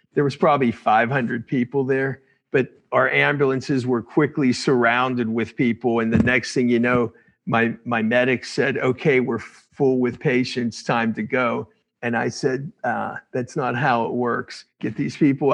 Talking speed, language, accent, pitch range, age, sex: 170 wpm, English, American, 115-135 Hz, 50-69, male